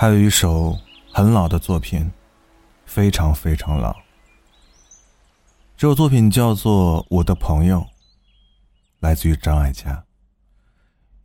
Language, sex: Chinese, male